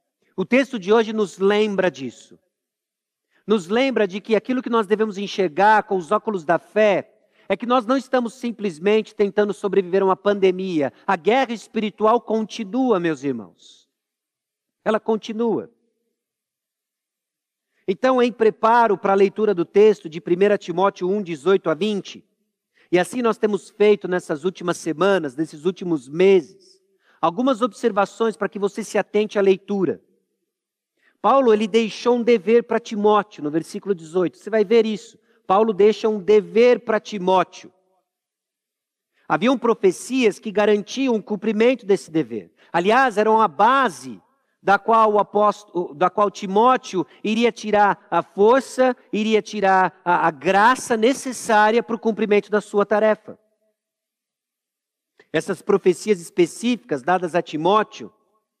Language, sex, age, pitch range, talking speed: Portuguese, male, 50-69, 190-225 Hz, 135 wpm